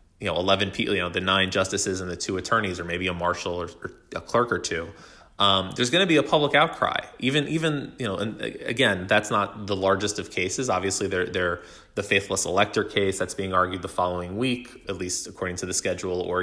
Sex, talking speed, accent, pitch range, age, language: male, 225 wpm, American, 90-100 Hz, 20-39, English